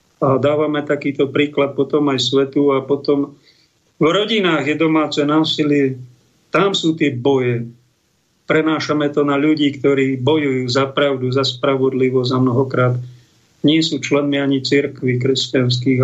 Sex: male